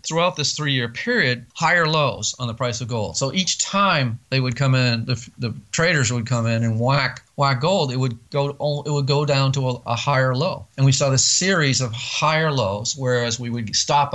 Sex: male